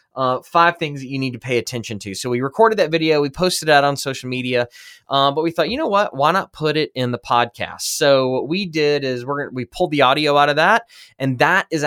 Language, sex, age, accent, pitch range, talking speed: English, male, 20-39, American, 120-150 Hz, 260 wpm